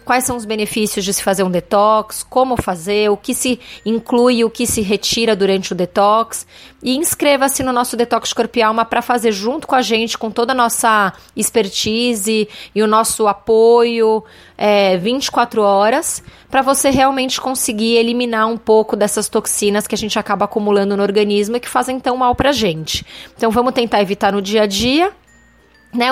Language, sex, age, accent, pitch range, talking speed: Portuguese, female, 20-39, Brazilian, 205-245 Hz, 180 wpm